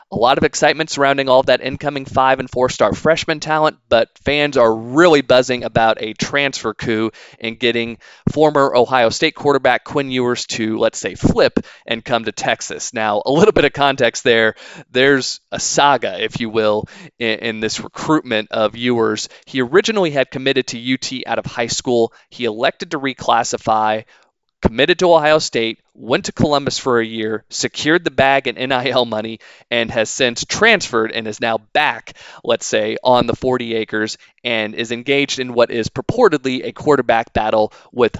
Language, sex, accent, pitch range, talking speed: English, male, American, 115-140 Hz, 175 wpm